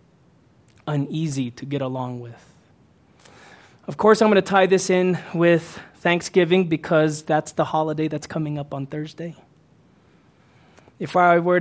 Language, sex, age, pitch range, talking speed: English, male, 20-39, 150-190 Hz, 140 wpm